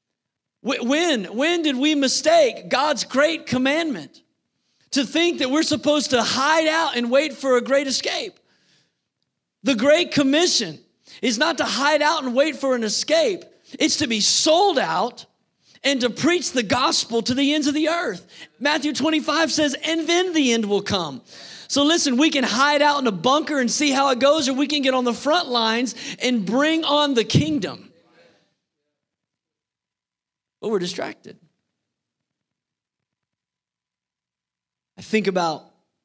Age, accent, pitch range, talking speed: 40-59, American, 205-290 Hz, 155 wpm